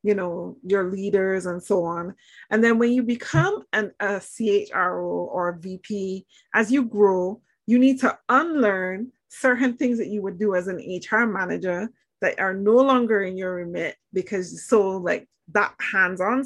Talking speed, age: 165 wpm, 20-39